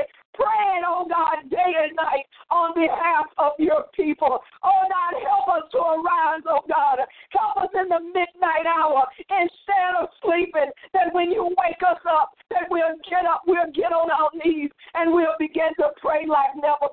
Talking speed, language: 185 wpm, English